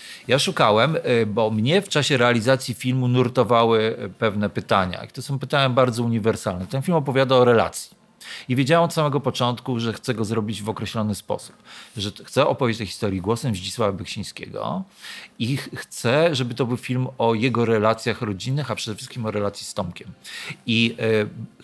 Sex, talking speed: male, 170 wpm